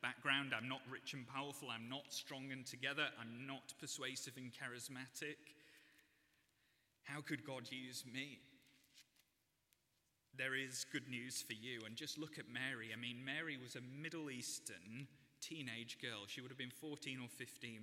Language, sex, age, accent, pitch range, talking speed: English, male, 30-49, British, 120-145 Hz, 160 wpm